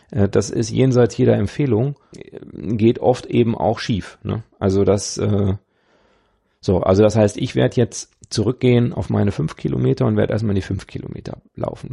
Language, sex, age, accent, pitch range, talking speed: German, male, 40-59, German, 100-115 Hz, 165 wpm